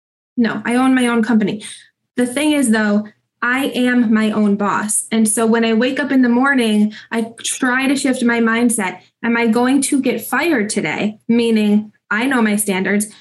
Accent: American